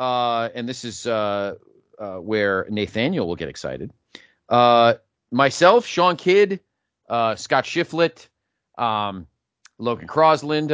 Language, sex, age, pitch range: English, male, 30-49, 105-150 Hz